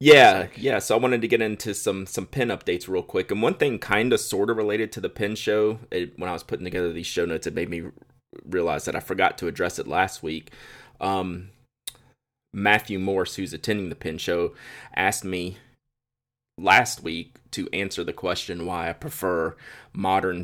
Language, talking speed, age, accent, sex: English, 195 wpm, 30-49, American, male